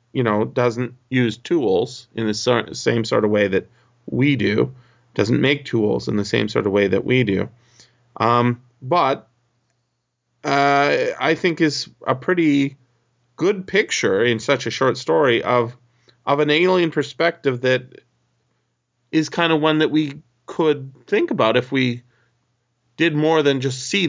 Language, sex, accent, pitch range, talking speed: English, male, American, 115-140 Hz, 155 wpm